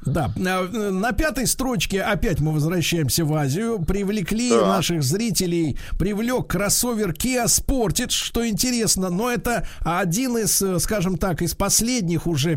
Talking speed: 130 wpm